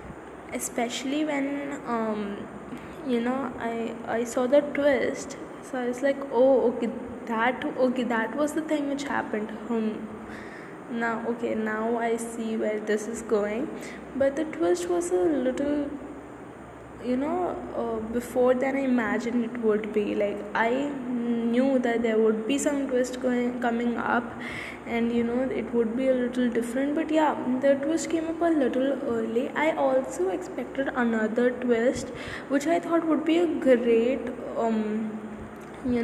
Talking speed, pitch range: 155 wpm, 235-290 Hz